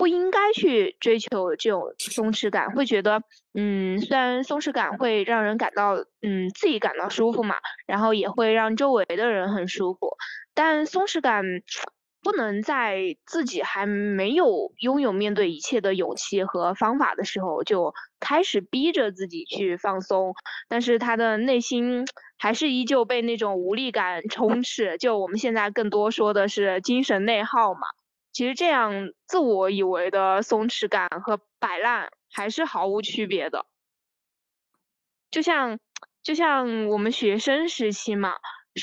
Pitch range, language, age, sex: 205-260 Hz, Chinese, 20-39, female